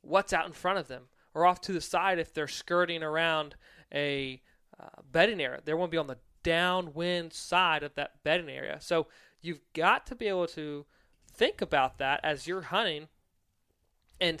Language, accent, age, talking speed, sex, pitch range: English, American, 20-39, 185 wpm, male, 145-175 Hz